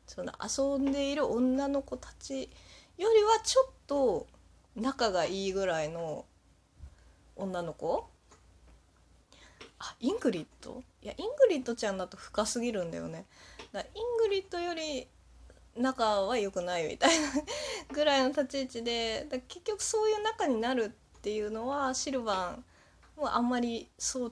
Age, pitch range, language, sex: 20-39, 195-290 Hz, Japanese, female